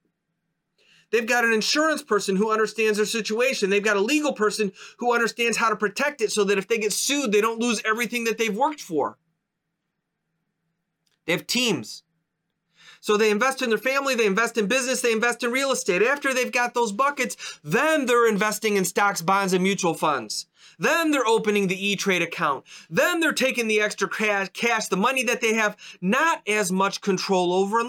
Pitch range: 190-250 Hz